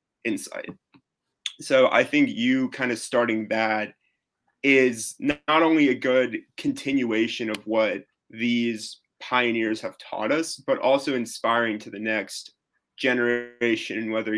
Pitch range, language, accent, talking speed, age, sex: 110-130 Hz, English, American, 125 wpm, 20-39, male